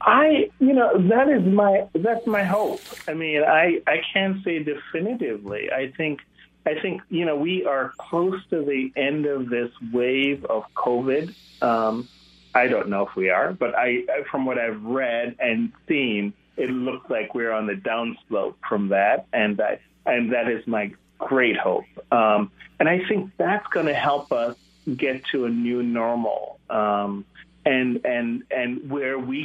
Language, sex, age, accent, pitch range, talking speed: English, male, 30-49, American, 115-150 Hz, 175 wpm